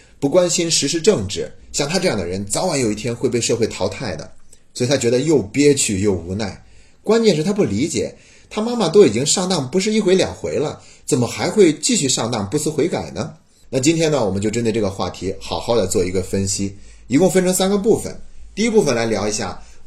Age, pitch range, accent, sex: 30-49, 95-145 Hz, native, male